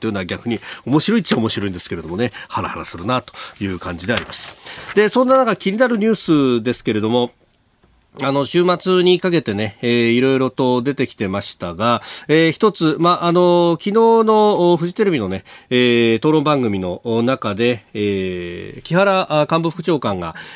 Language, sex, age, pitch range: Japanese, male, 40-59, 110-175 Hz